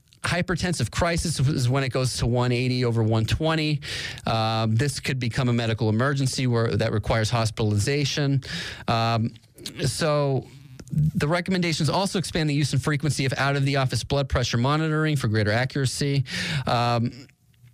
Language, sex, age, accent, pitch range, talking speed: English, male, 30-49, American, 115-145 Hz, 145 wpm